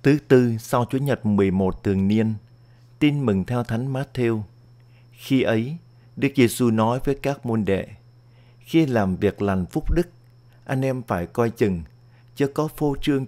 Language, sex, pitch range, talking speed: Vietnamese, male, 110-130 Hz, 165 wpm